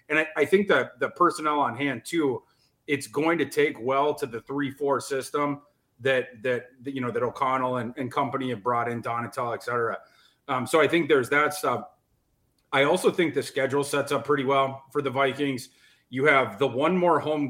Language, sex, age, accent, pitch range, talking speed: English, male, 30-49, American, 125-140 Hz, 210 wpm